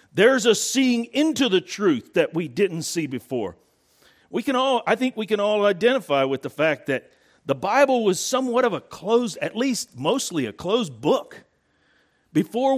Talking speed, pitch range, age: 180 wpm, 155-240 Hz, 50-69